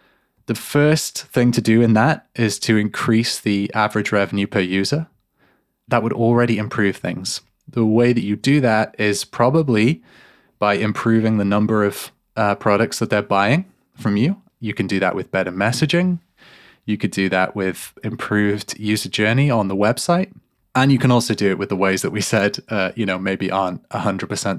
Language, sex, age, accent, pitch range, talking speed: English, male, 20-39, British, 100-120 Hz, 185 wpm